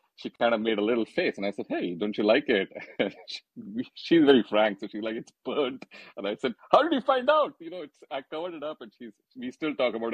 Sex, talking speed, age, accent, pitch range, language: male, 265 wpm, 30-49, Indian, 90-120 Hz, English